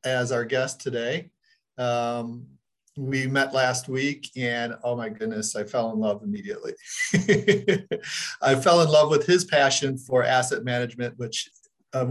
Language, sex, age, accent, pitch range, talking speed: English, male, 40-59, American, 120-140 Hz, 150 wpm